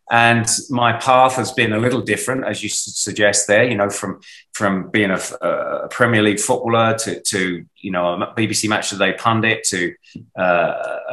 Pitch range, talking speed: 95-120 Hz, 175 wpm